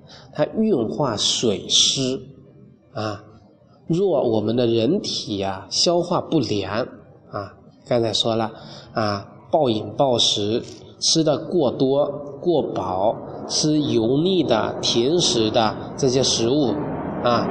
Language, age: Chinese, 20-39